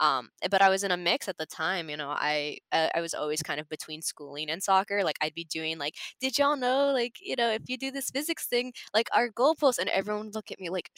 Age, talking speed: 20-39, 275 wpm